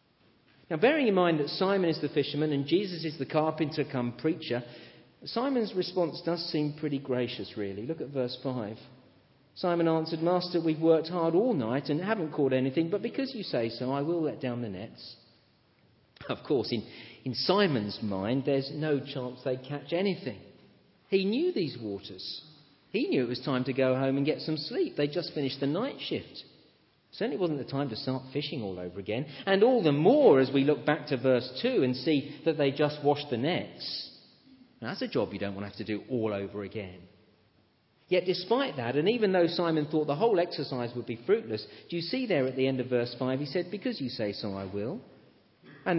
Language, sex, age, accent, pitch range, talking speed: English, male, 40-59, British, 120-165 Hz, 205 wpm